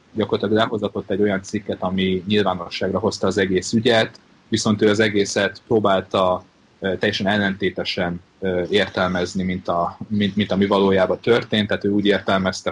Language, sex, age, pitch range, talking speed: Hungarian, male, 30-49, 95-110 Hz, 140 wpm